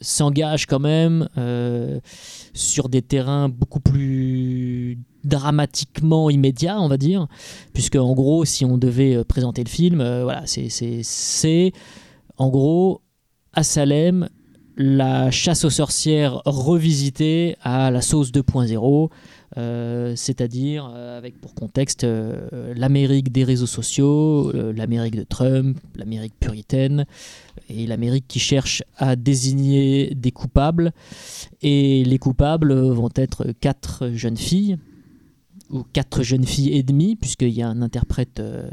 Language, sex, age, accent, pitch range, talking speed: French, male, 20-39, French, 120-145 Hz, 135 wpm